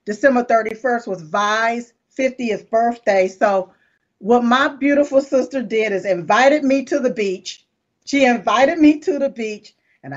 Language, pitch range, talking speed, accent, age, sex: English, 195-260 Hz, 150 wpm, American, 40-59, female